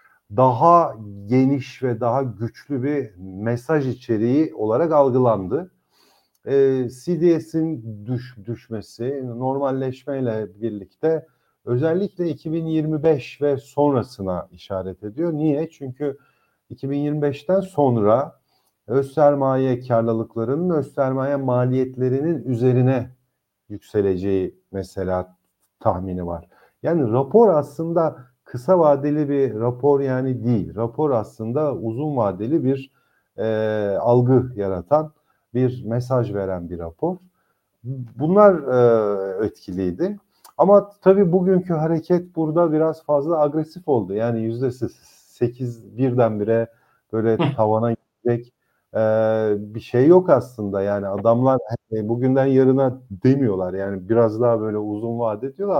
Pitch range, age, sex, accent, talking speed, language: 110-145 Hz, 50-69, male, native, 100 wpm, Turkish